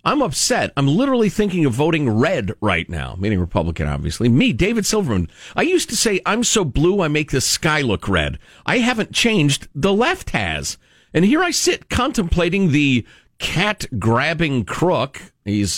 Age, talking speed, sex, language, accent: 50-69, 165 wpm, male, English, American